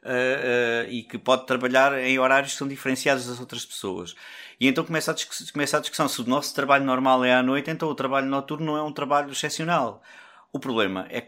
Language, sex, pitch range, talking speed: Portuguese, male, 125-160 Hz, 220 wpm